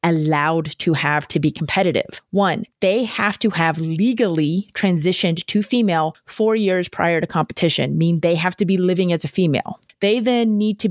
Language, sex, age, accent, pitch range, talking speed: English, female, 30-49, American, 175-225 Hz, 180 wpm